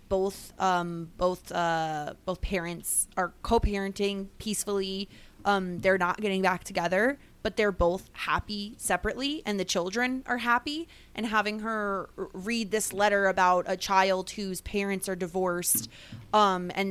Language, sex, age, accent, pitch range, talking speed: English, female, 20-39, American, 180-230 Hz, 140 wpm